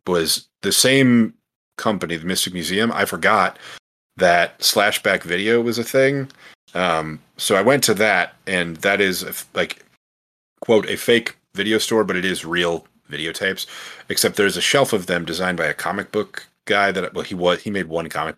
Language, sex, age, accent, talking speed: English, male, 30-49, American, 180 wpm